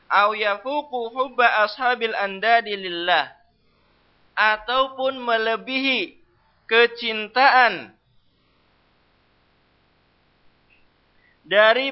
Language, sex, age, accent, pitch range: English, male, 20-39, Indonesian, 185-230 Hz